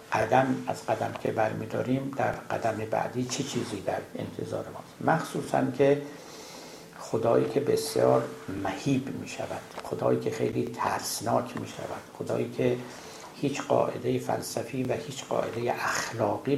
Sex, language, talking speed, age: male, Persian, 140 wpm, 60-79